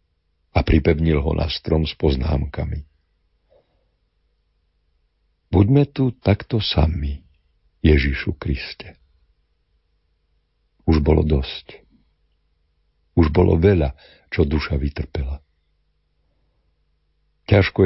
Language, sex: Slovak, male